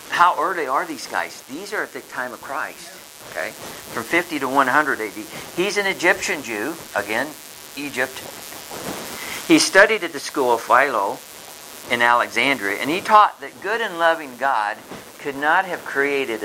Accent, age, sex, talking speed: American, 50-69, male, 165 wpm